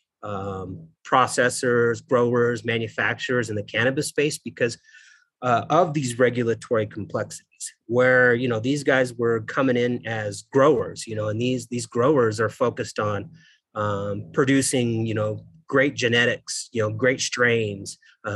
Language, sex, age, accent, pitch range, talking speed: English, male, 30-49, American, 110-130 Hz, 145 wpm